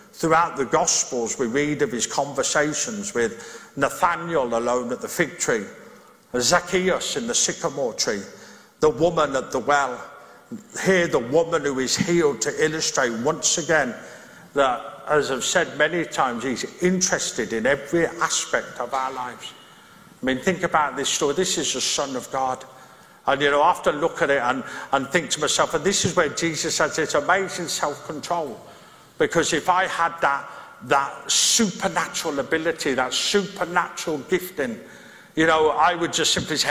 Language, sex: English, male